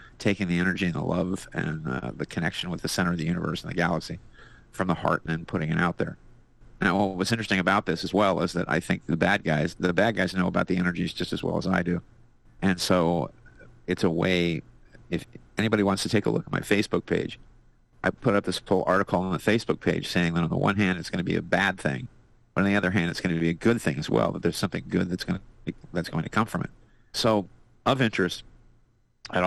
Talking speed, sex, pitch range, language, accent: 255 wpm, male, 90-110 Hz, English, American